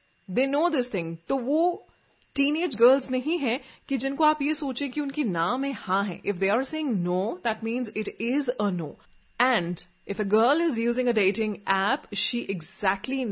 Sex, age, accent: female, 30-49, native